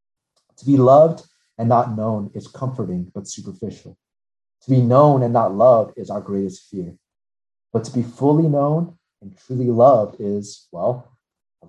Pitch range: 105-150 Hz